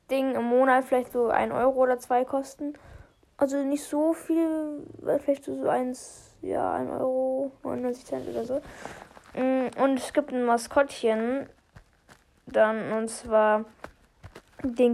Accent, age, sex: German, 10-29, female